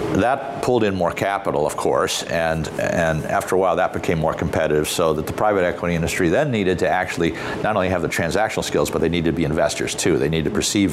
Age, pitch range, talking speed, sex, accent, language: 50-69, 85-100 Hz, 235 wpm, male, American, English